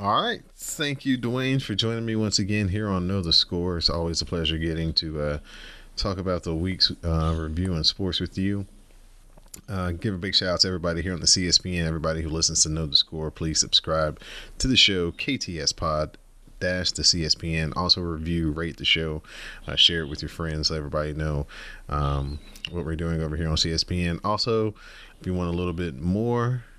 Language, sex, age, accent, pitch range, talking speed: English, male, 30-49, American, 80-95 Hz, 205 wpm